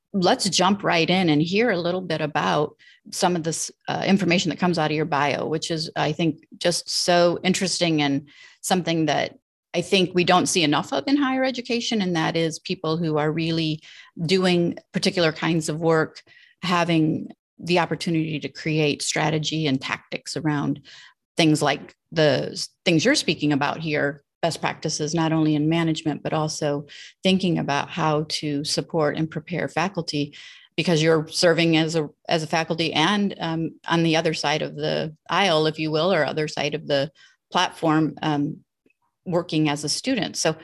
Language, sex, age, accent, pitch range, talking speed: English, female, 30-49, American, 155-175 Hz, 175 wpm